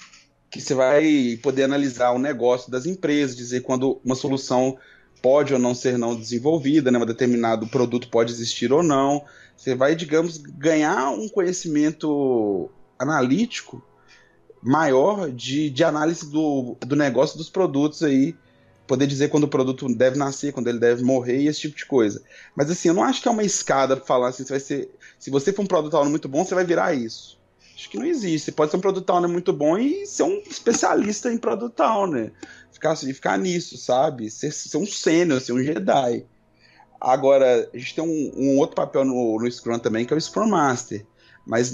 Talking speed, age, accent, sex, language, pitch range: 185 wpm, 20-39, Brazilian, male, Portuguese, 125-170 Hz